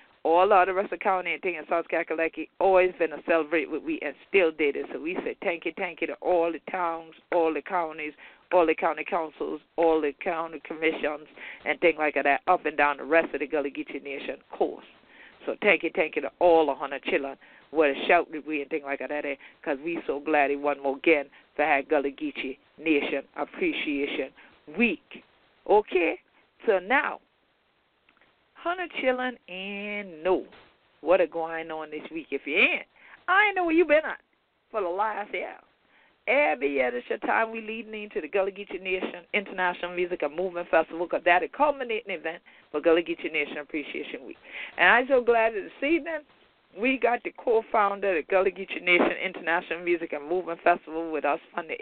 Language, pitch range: English, 155-225 Hz